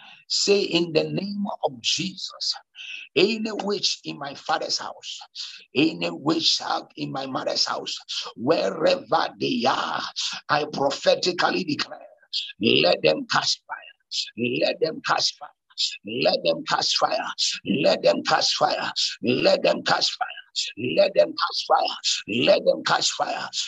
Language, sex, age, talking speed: English, male, 60-79, 130 wpm